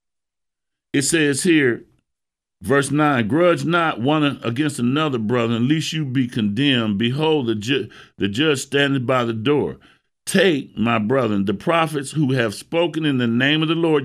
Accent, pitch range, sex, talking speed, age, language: American, 120-165 Hz, male, 160 wpm, 50-69, English